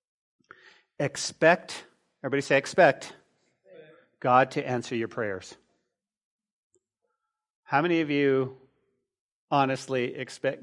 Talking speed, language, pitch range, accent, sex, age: 85 wpm, English, 125-205 Hz, American, male, 40-59